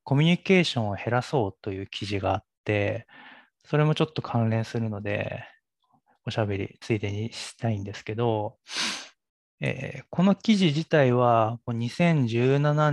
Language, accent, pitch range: Japanese, native, 110-135 Hz